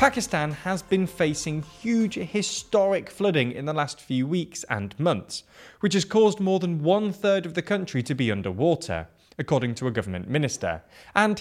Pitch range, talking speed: 120-175 Hz, 170 wpm